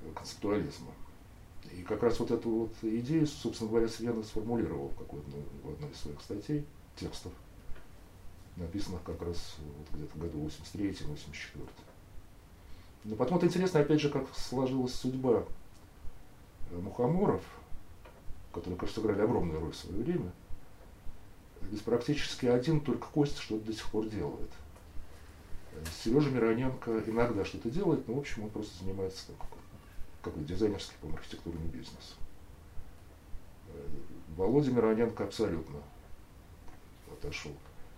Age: 40-59